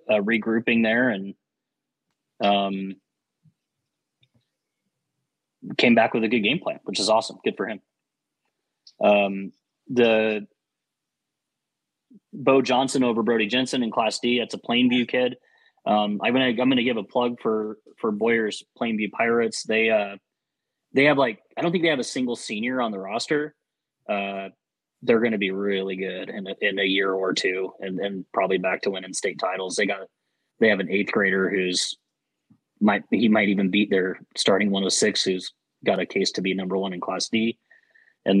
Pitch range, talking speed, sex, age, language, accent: 95-120 Hz, 180 wpm, male, 20-39, English, American